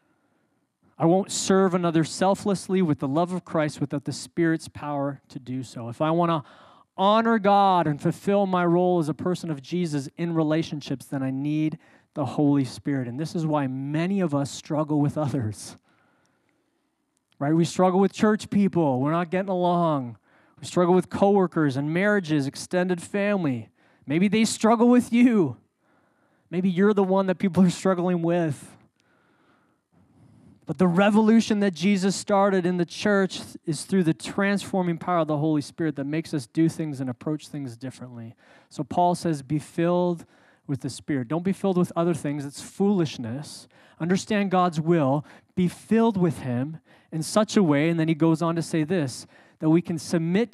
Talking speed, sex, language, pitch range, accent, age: 175 wpm, male, English, 140-185 Hz, American, 20-39